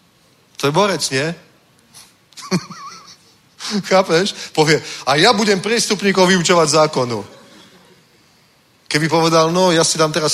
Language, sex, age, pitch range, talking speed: Czech, male, 30-49, 140-170 Hz, 105 wpm